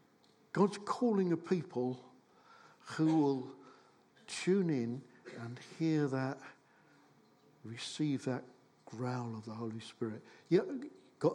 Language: English